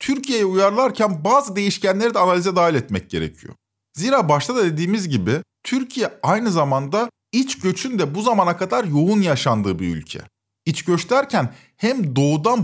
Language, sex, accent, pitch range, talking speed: Turkish, male, native, 140-205 Hz, 150 wpm